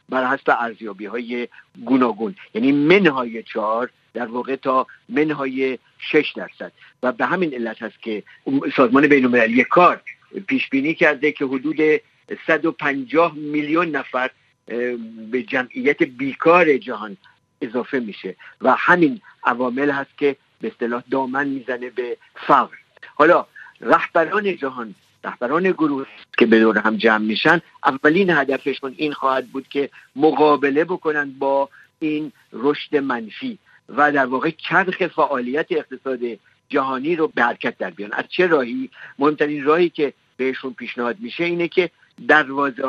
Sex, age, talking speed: male, 50-69, 130 wpm